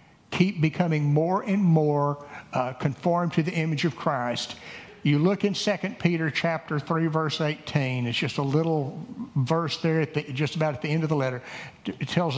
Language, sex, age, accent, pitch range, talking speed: English, male, 60-79, American, 135-160 Hz, 190 wpm